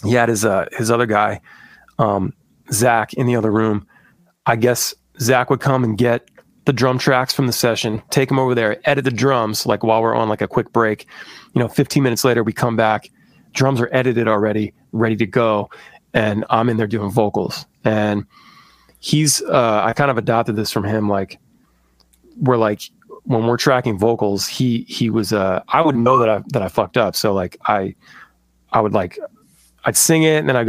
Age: 20-39